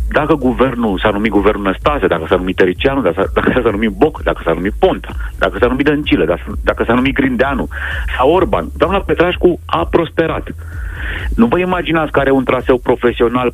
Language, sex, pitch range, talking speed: Romanian, male, 85-140 Hz, 180 wpm